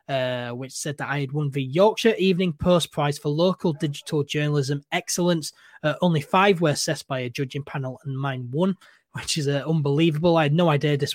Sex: male